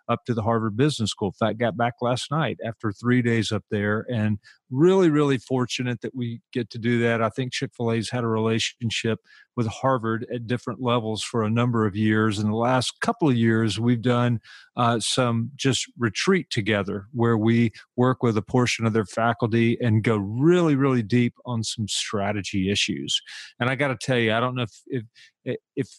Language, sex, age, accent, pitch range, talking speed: English, male, 40-59, American, 110-130 Hz, 205 wpm